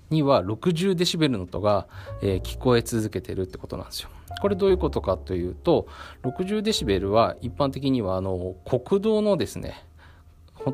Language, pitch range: Japanese, 85-145 Hz